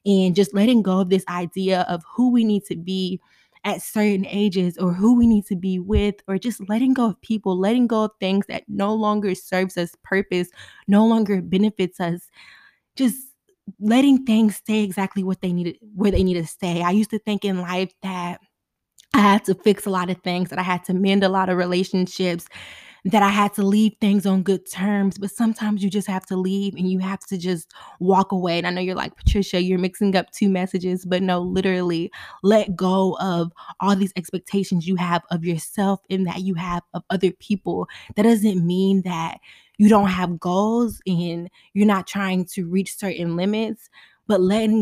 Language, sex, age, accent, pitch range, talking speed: English, female, 20-39, American, 180-205 Hz, 205 wpm